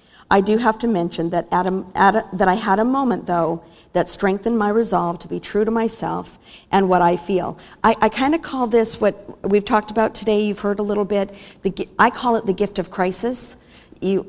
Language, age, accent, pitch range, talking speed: English, 50-69, American, 180-210 Hz, 200 wpm